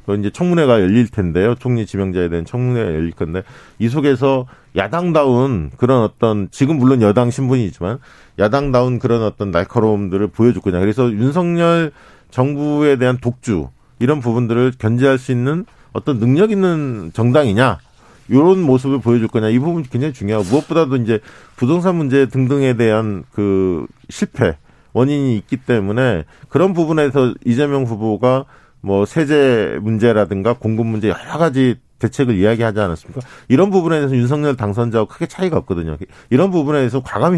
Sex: male